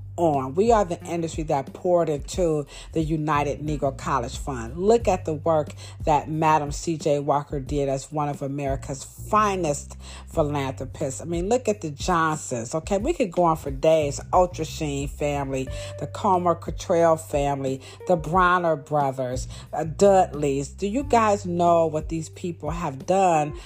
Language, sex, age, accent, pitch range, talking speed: English, female, 40-59, American, 145-220 Hz, 155 wpm